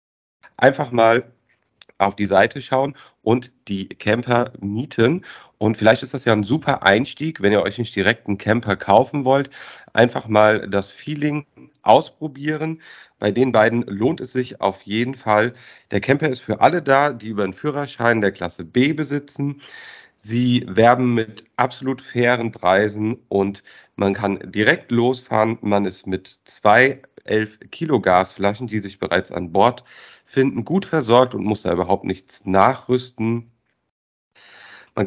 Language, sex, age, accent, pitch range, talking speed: German, male, 40-59, German, 100-130 Hz, 150 wpm